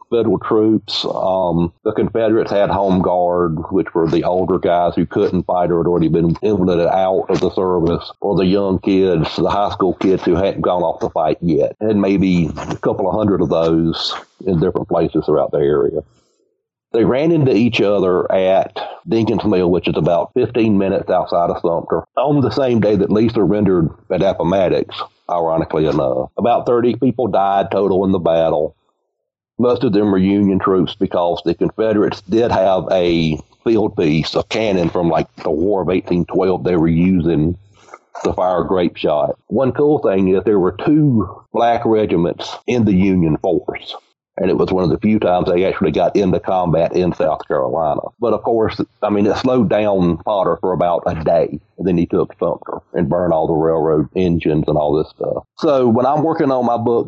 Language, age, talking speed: English, 40-59, 190 wpm